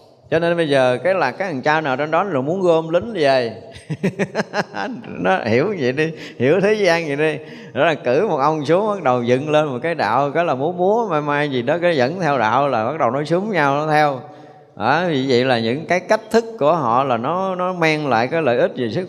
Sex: male